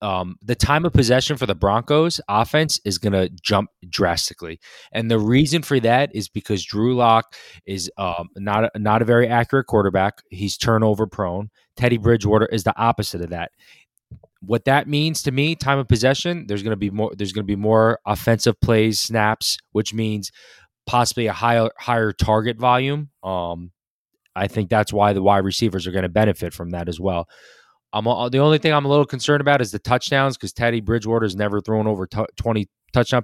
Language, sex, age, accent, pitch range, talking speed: English, male, 20-39, American, 100-125 Hz, 195 wpm